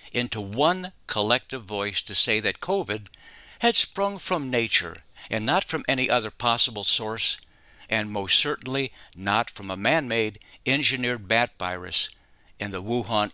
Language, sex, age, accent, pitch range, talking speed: English, male, 60-79, American, 100-130 Hz, 145 wpm